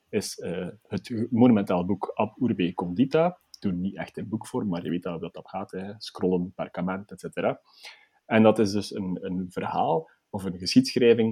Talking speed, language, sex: 185 wpm, Dutch, male